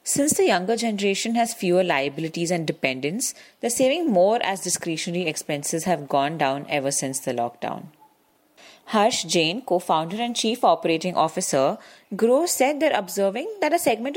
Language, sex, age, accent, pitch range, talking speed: English, female, 30-49, Indian, 165-235 Hz, 155 wpm